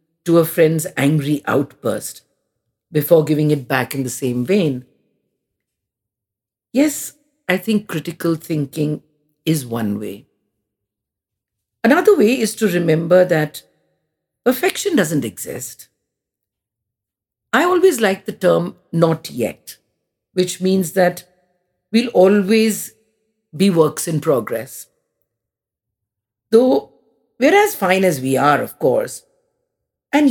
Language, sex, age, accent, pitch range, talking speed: English, female, 50-69, Indian, 125-205 Hz, 110 wpm